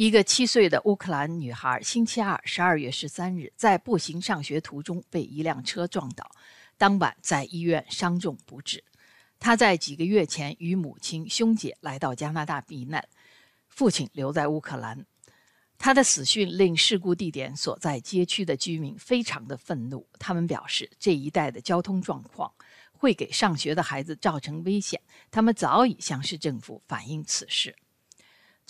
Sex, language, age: female, Chinese, 50-69